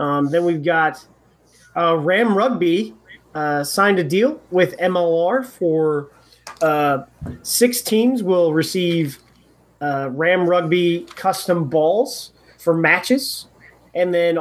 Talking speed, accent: 115 wpm, American